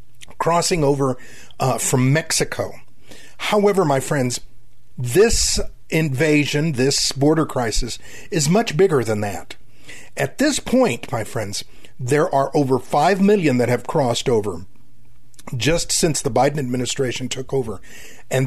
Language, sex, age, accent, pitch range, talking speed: English, male, 50-69, American, 125-190 Hz, 130 wpm